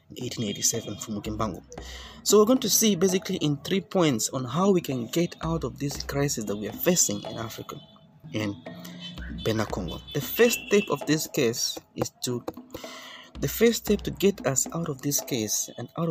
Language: English